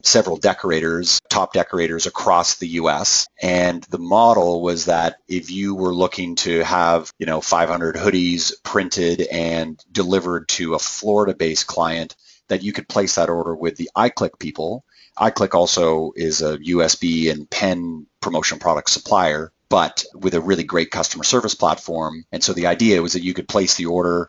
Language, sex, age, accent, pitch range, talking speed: English, male, 30-49, American, 85-95 Hz, 170 wpm